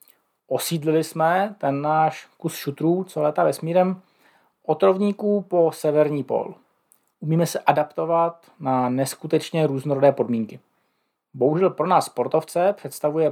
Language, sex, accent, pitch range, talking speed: Czech, male, native, 140-180 Hz, 115 wpm